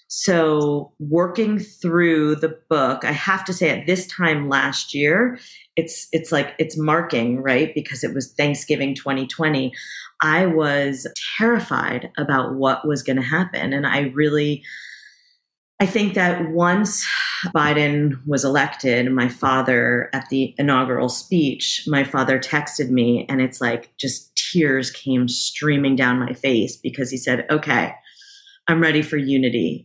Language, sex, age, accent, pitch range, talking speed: English, female, 30-49, American, 135-175 Hz, 145 wpm